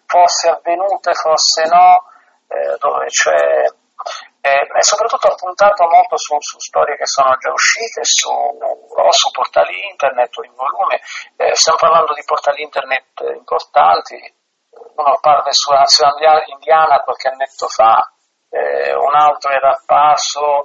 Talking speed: 140 wpm